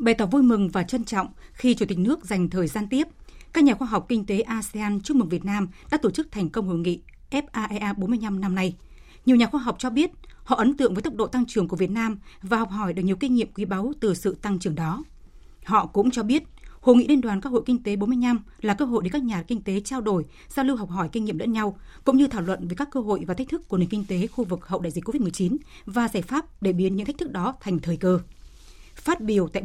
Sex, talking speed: female, 275 wpm